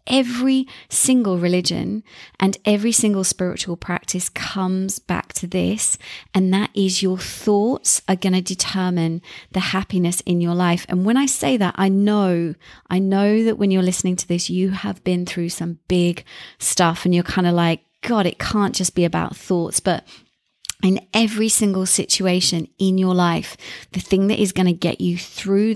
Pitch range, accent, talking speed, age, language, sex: 175-200 Hz, British, 180 wpm, 30-49, English, female